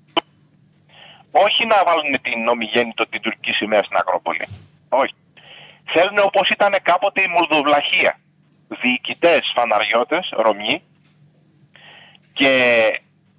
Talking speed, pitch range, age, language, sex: 95 wpm, 155-195 Hz, 30-49, Greek, male